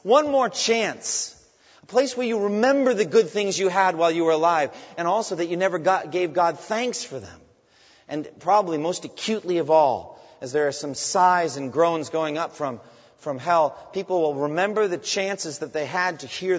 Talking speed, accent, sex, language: 200 wpm, American, male, English